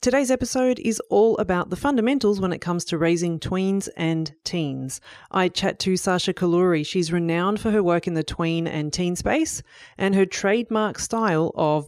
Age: 30-49